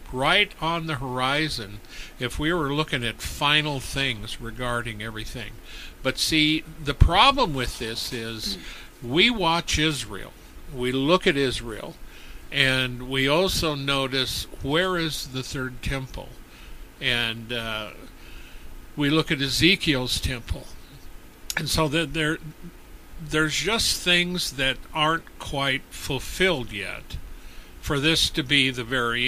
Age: 50-69